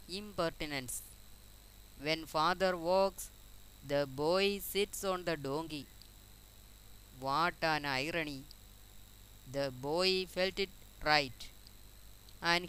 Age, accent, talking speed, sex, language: 20-39, native, 90 wpm, female, Malayalam